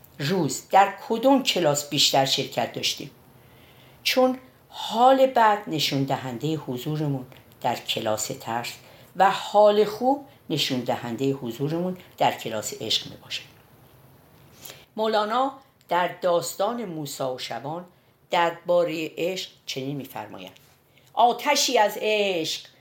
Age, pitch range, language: 50-69, 140-195 Hz, Persian